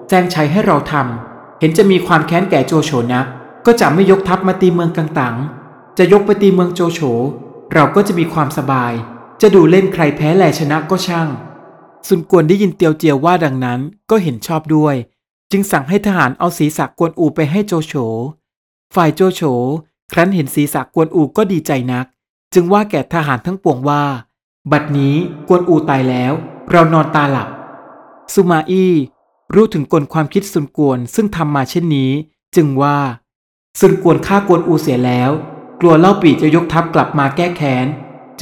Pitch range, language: 140-180 Hz, Thai